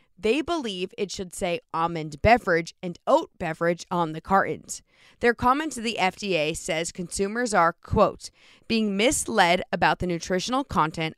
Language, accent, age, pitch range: English, American, 20-39, 175-235 Hz